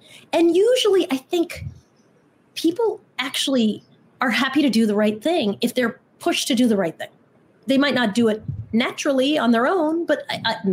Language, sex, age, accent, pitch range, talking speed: English, female, 30-49, American, 220-300 Hz, 180 wpm